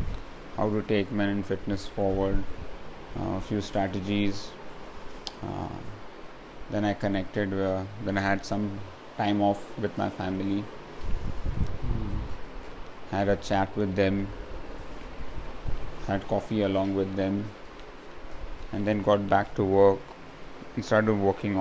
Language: English